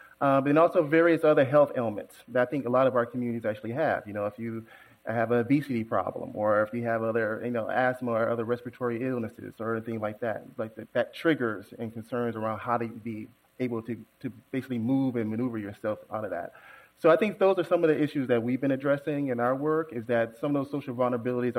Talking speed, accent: 235 wpm, American